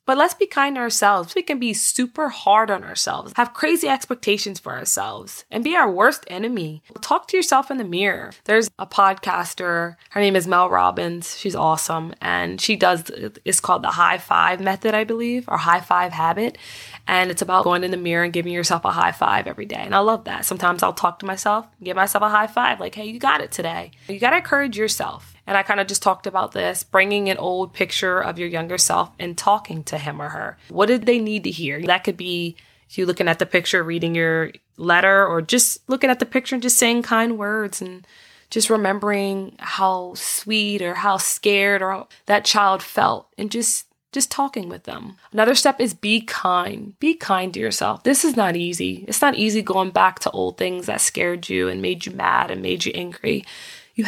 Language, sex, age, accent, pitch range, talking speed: English, female, 20-39, American, 175-225 Hz, 215 wpm